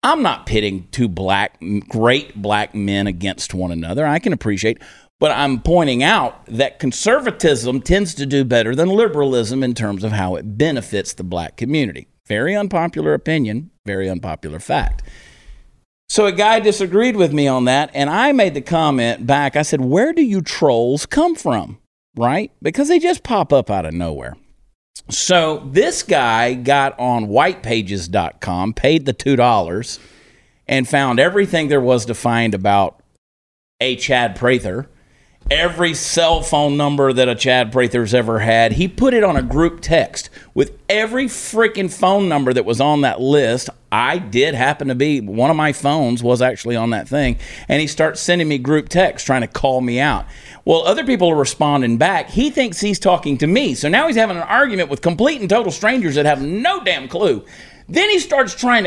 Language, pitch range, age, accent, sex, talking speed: English, 115-180 Hz, 40-59, American, male, 180 wpm